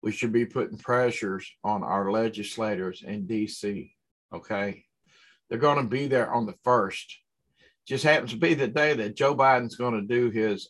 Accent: American